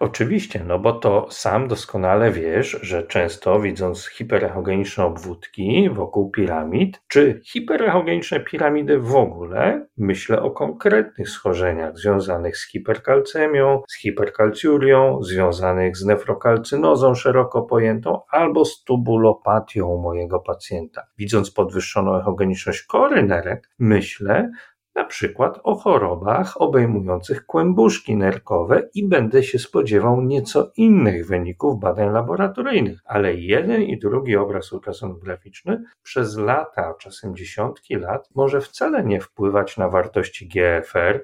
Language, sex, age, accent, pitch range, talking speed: Polish, male, 40-59, native, 95-140 Hz, 115 wpm